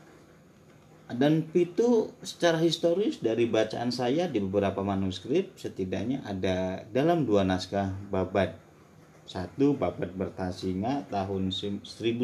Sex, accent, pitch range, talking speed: male, Indonesian, 95-135 Hz, 100 wpm